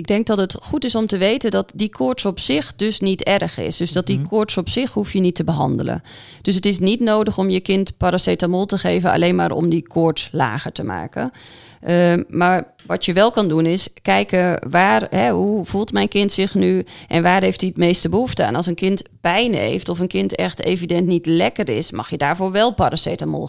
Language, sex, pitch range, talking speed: Dutch, female, 165-200 Hz, 230 wpm